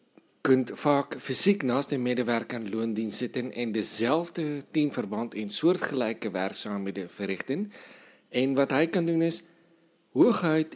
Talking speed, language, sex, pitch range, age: 135 wpm, Dutch, male, 115-150 Hz, 50-69